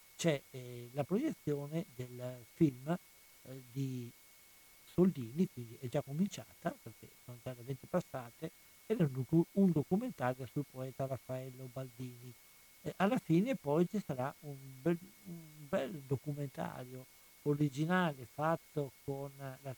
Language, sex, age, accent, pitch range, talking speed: Italian, male, 60-79, native, 130-160 Hz, 125 wpm